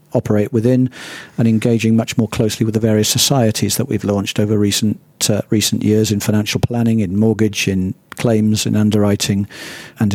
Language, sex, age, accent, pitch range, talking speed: English, male, 50-69, British, 110-130 Hz, 170 wpm